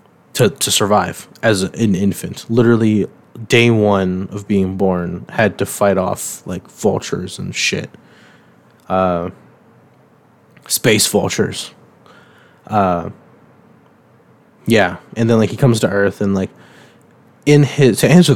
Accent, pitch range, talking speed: American, 100-125 Hz, 125 wpm